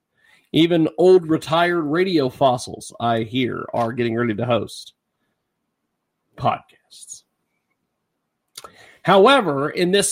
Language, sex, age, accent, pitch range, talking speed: English, male, 40-59, American, 155-205 Hz, 95 wpm